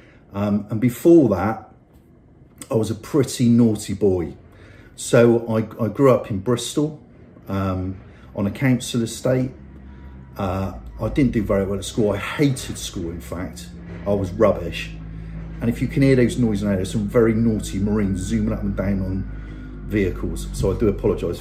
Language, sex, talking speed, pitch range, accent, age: English, male, 170 wpm, 100-120 Hz, British, 40-59